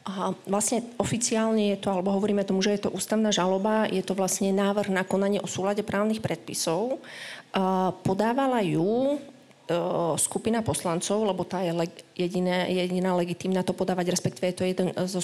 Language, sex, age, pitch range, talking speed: Slovak, female, 30-49, 180-200 Hz, 160 wpm